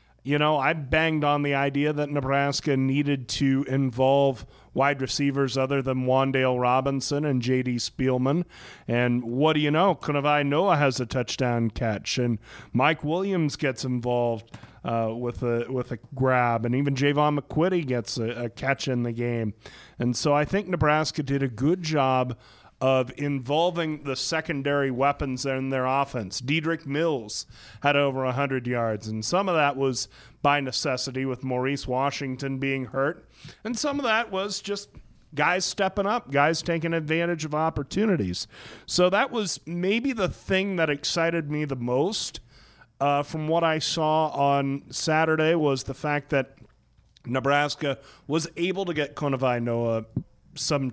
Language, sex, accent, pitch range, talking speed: English, male, American, 130-155 Hz, 155 wpm